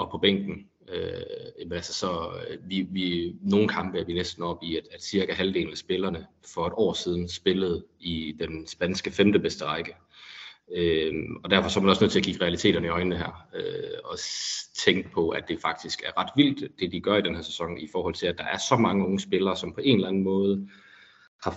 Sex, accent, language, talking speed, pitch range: male, native, Danish, 225 wpm, 90-115 Hz